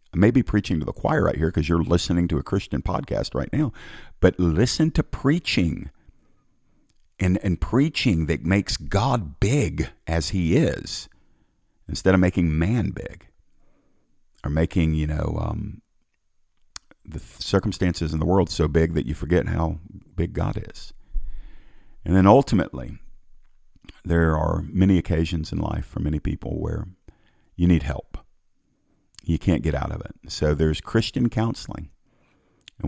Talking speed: 150 wpm